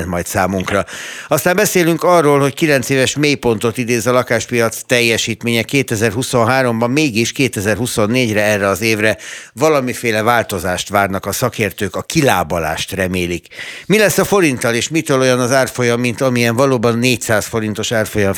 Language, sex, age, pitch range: Hungarian, male, 60-79, 95-125 Hz